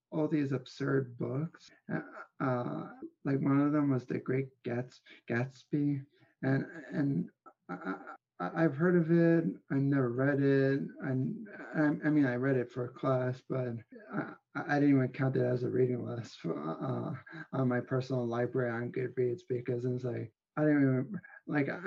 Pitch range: 125-150 Hz